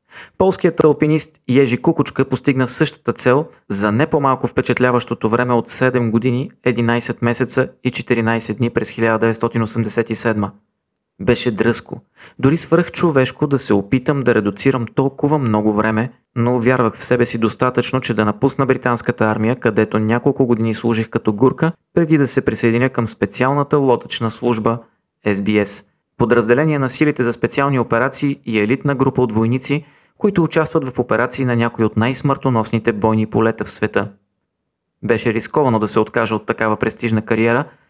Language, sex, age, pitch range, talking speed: Bulgarian, male, 30-49, 110-135 Hz, 150 wpm